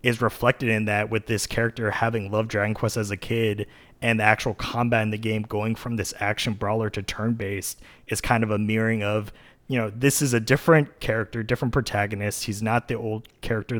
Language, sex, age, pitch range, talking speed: English, male, 20-39, 110-125 Hz, 210 wpm